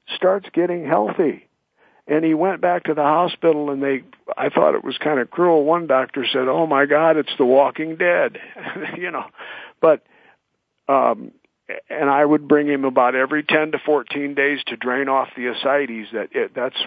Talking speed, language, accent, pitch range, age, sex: 185 wpm, English, American, 130-160 Hz, 50-69, male